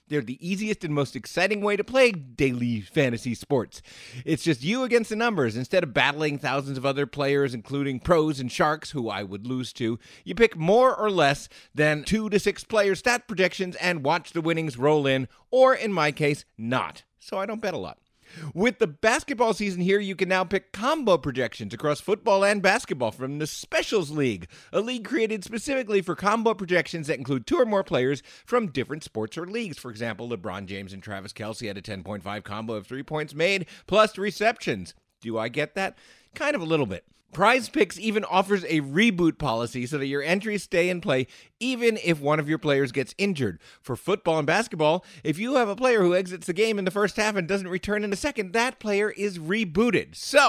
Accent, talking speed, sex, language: American, 210 wpm, male, English